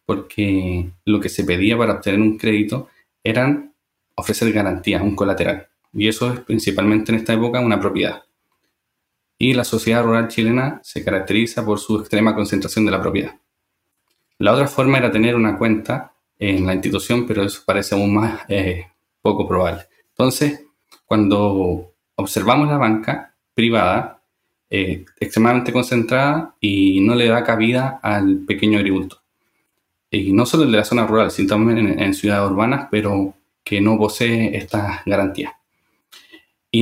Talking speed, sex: 150 wpm, male